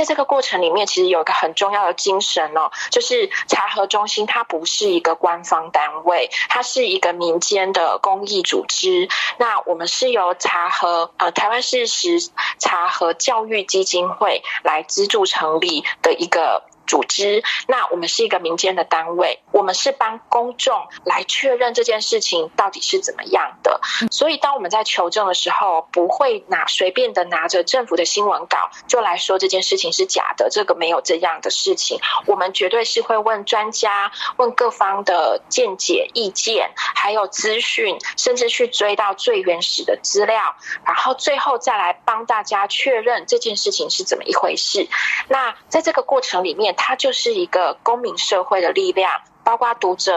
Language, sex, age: Chinese, female, 20-39